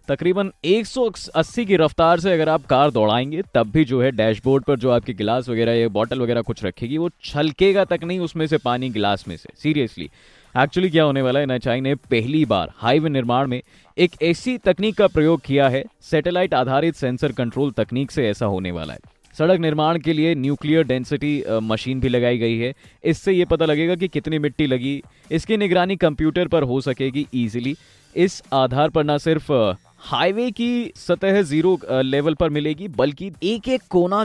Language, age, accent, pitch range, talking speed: Hindi, 20-39, native, 125-170 Hz, 185 wpm